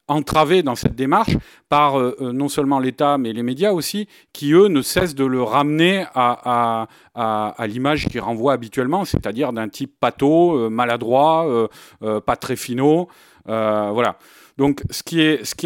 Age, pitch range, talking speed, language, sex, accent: 40-59, 115-145 Hz, 180 wpm, French, male, French